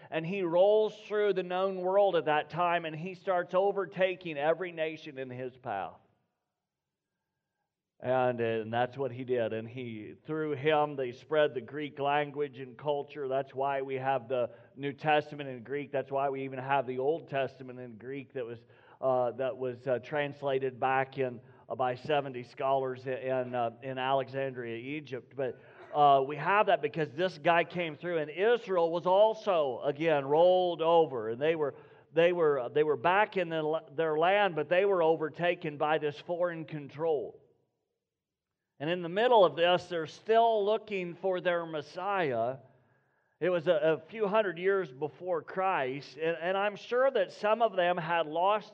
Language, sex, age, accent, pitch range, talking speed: English, male, 40-59, American, 130-180 Hz, 170 wpm